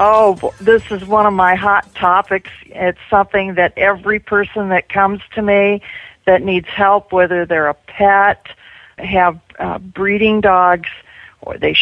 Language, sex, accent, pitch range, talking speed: English, female, American, 185-220 Hz, 150 wpm